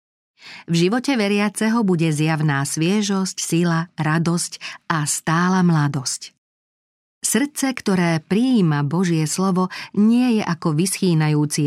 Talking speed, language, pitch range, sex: 105 wpm, Slovak, 155-195 Hz, female